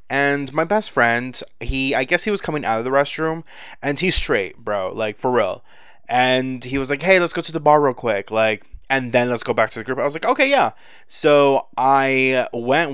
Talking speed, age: 230 wpm, 20-39